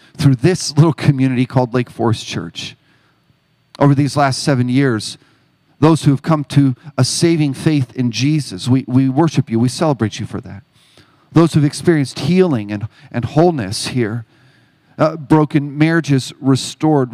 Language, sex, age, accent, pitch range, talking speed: English, male, 40-59, American, 125-155 Hz, 160 wpm